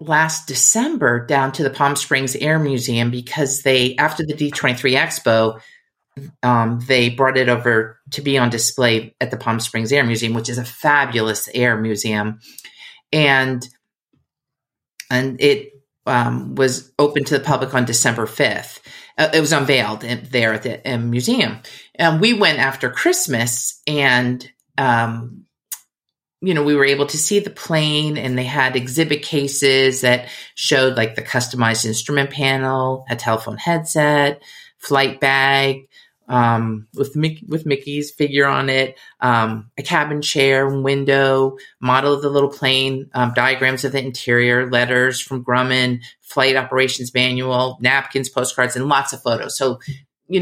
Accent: American